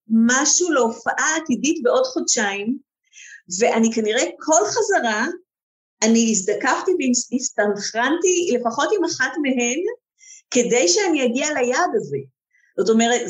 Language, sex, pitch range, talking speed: Hebrew, female, 225-345 Hz, 105 wpm